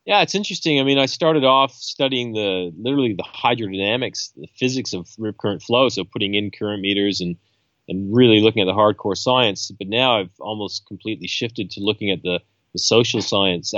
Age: 30-49